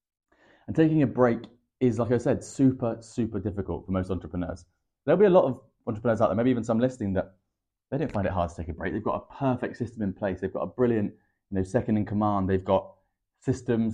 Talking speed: 230 wpm